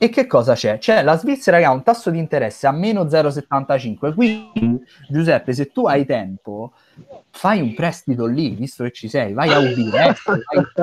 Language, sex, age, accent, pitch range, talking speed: Italian, male, 30-49, native, 130-180 Hz, 190 wpm